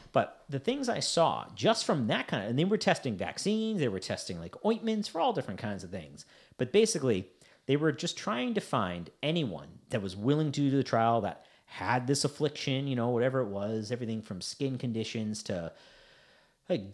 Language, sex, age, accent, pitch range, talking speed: English, male, 40-59, American, 110-150 Hz, 200 wpm